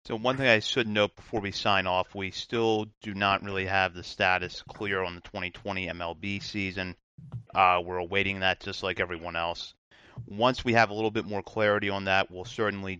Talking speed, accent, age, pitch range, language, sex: 205 wpm, American, 30-49, 95-110 Hz, English, male